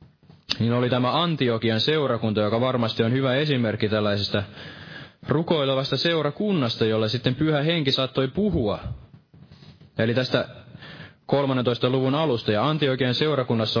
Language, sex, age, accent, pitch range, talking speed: Finnish, male, 20-39, native, 110-145 Hz, 115 wpm